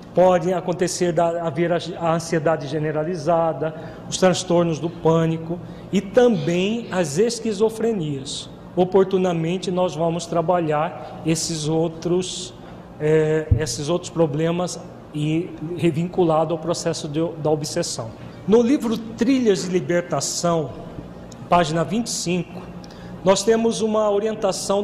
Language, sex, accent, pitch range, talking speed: Portuguese, male, Brazilian, 165-200 Hz, 100 wpm